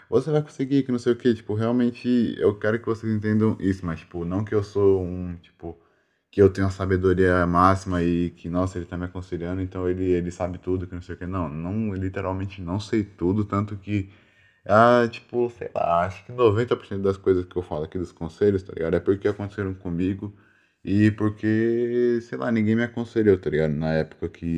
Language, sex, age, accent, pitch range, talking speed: Portuguese, male, 10-29, Brazilian, 85-110 Hz, 215 wpm